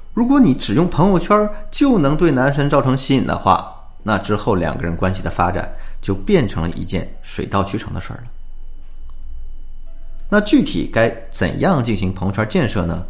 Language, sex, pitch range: Chinese, male, 90-140 Hz